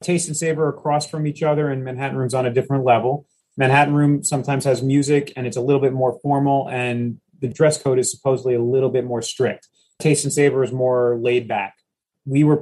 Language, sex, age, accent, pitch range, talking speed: English, male, 30-49, American, 130-155 Hz, 220 wpm